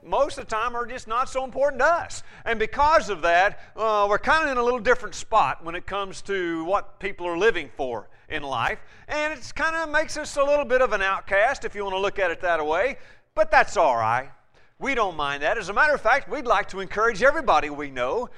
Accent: American